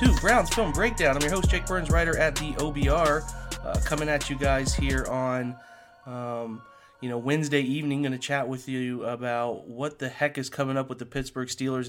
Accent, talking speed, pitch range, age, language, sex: American, 200 wpm, 125-145 Hz, 30-49, English, male